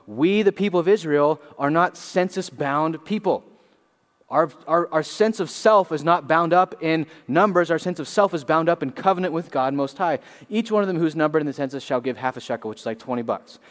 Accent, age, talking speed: American, 30-49, 235 wpm